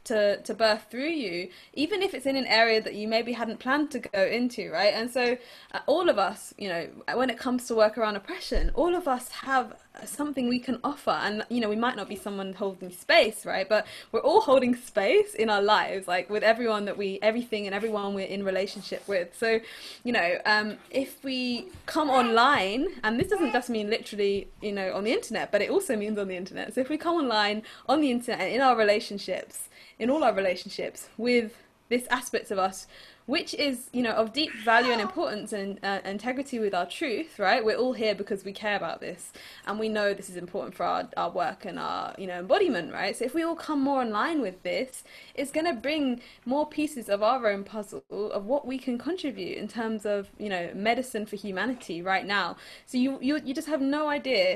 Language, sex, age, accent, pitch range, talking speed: English, female, 10-29, British, 205-260 Hz, 225 wpm